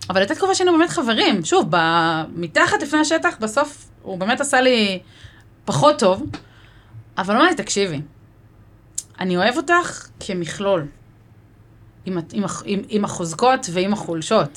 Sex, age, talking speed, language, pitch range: female, 20-39, 135 wpm, Hebrew, 155-245 Hz